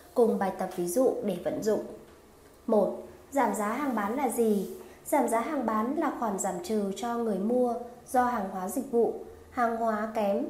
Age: 20-39